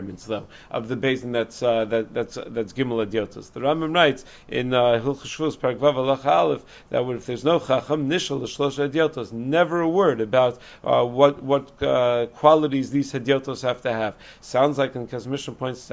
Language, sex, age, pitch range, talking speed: English, male, 50-69, 125-150 Hz, 175 wpm